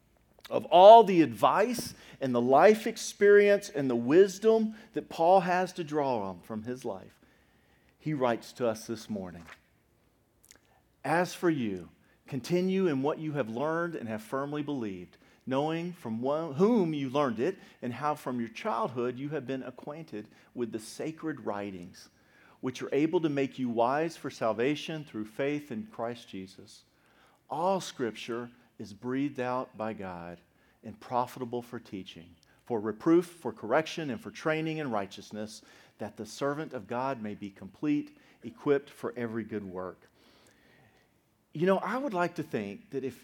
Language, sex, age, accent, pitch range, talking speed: English, male, 40-59, American, 110-155 Hz, 160 wpm